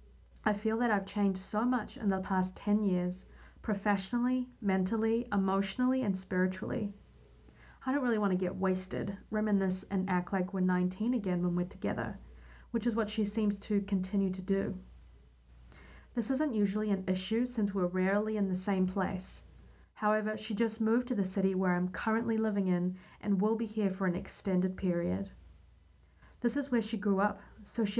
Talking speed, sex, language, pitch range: 180 wpm, female, English, 185-220 Hz